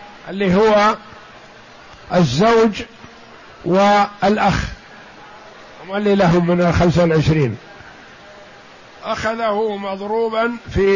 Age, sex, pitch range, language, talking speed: 50-69, male, 190-220 Hz, Arabic, 70 wpm